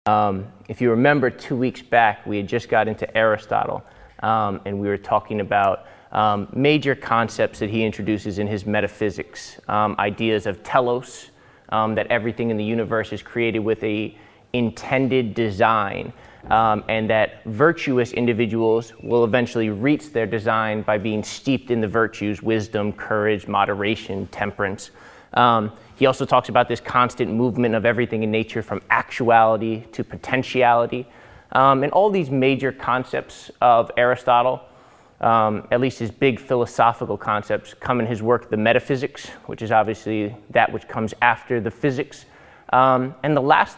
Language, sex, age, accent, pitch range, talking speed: English, male, 20-39, American, 105-125 Hz, 155 wpm